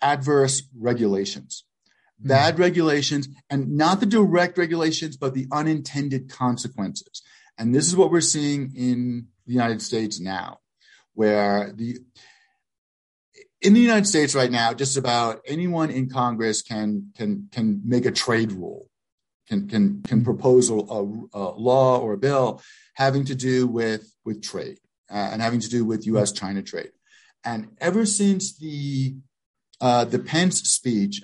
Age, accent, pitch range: 50-69, American, 110-150 Hz